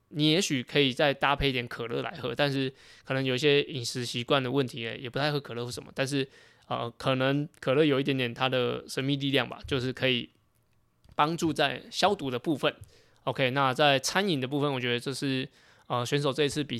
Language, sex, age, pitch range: Chinese, male, 20-39, 120-145 Hz